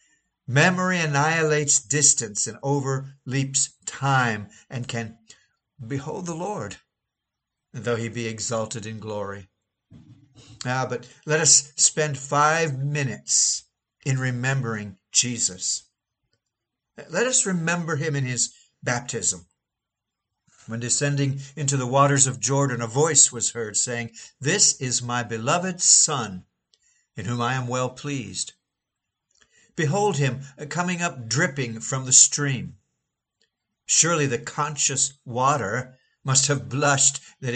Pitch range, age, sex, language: 120-145 Hz, 60-79, male, English